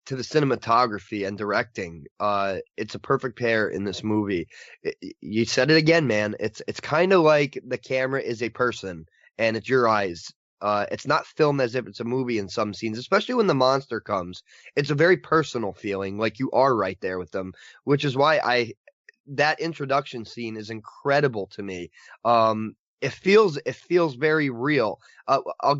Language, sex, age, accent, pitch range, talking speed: English, male, 20-39, American, 110-145 Hz, 190 wpm